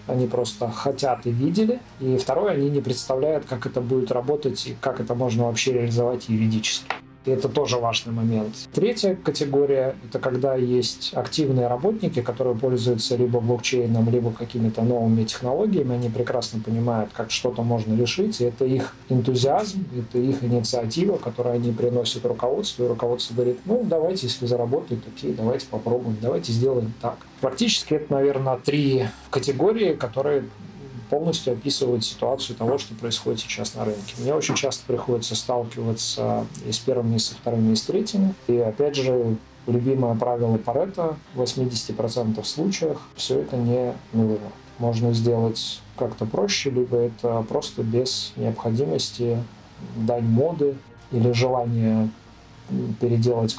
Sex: male